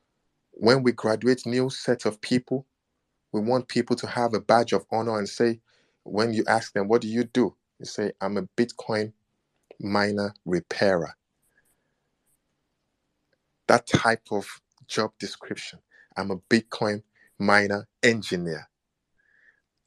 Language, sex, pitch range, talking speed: English, male, 100-125 Hz, 130 wpm